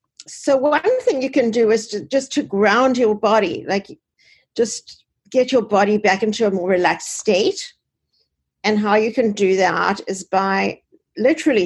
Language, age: English, 50-69